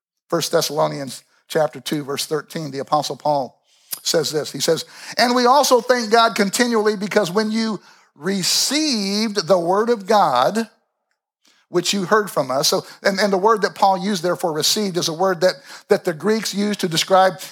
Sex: male